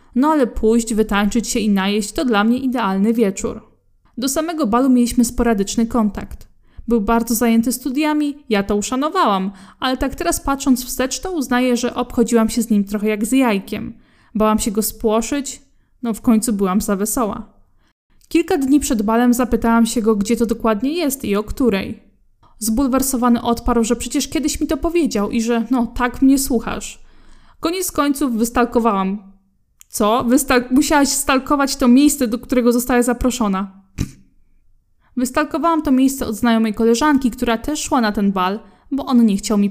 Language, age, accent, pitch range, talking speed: Polish, 20-39, native, 220-260 Hz, 165 wpm